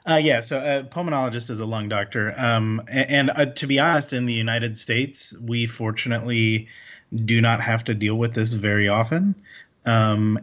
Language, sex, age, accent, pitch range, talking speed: English, male, 30-49, American, 110-120 Hz, 185 wpm